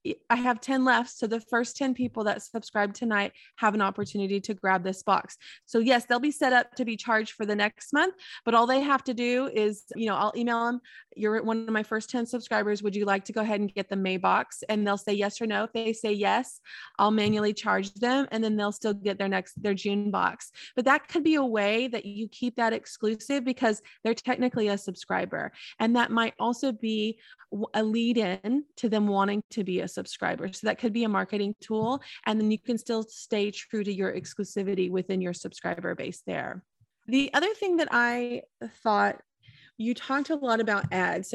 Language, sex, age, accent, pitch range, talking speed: English, female, 20-39, American, 200-240 Hz, 220 wpm